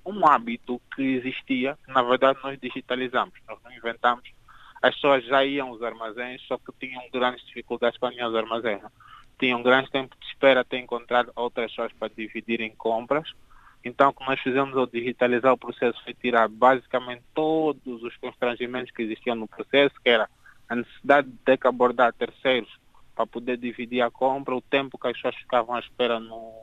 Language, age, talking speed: Portuguese, 20-39, 185 wpm